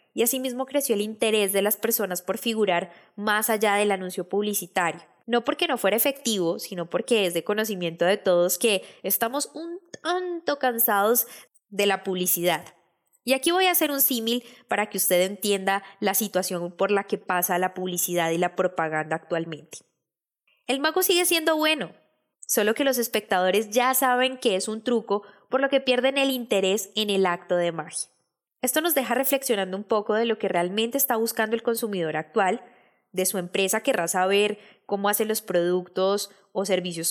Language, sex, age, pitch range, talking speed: Spanish, female, 10-29, 185-245 Hz, 180 wpm